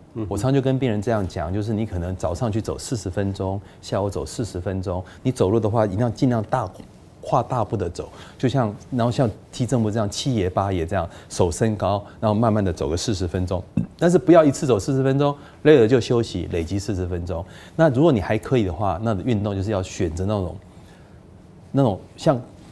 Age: 30-49